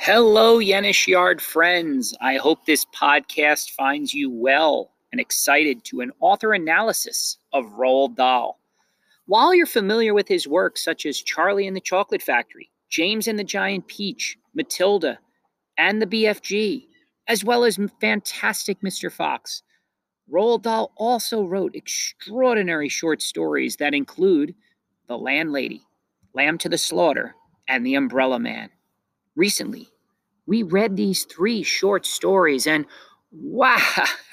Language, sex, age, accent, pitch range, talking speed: English, male, 40-59, American, 175-230 Hz, 135 wpm